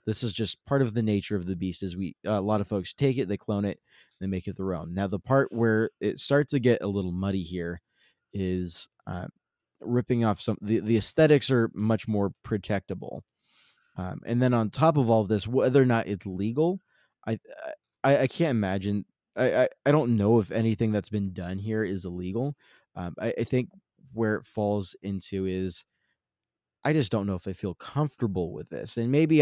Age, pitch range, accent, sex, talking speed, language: 20-39, 100-130 Hz, American, male, 210 wpm, English